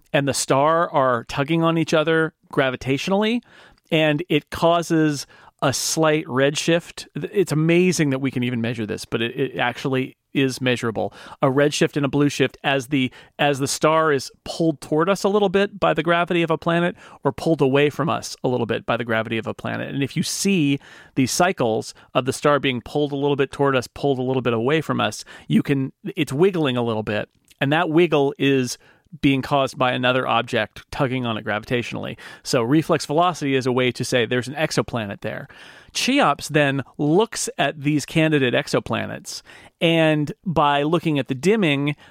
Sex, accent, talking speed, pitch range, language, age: male, American, 190 wpm, 130-160 Hz, English, 40-59